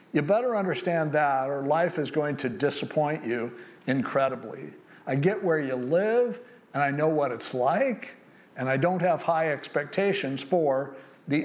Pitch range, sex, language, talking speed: 135-175 Hz, male, English, 160 wpm